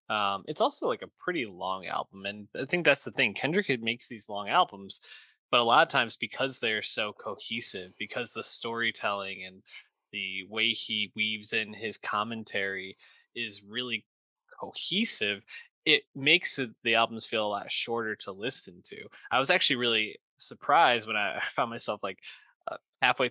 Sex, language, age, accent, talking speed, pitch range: male, English, 20-39, American, 165 wpm, 105-135 Hz